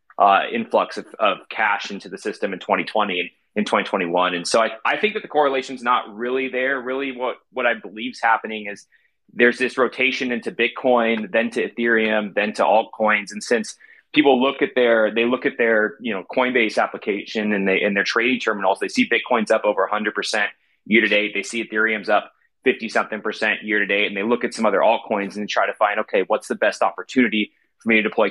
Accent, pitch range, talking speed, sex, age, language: American, 105-130 Hz, 225 wpm, male, 30-49, English